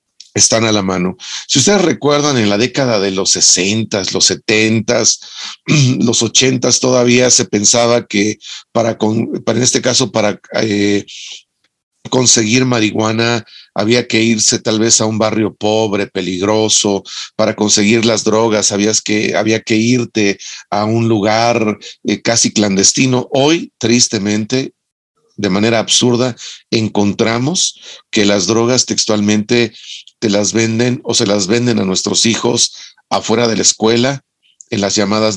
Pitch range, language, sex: 105-120 Hz, Spanish, male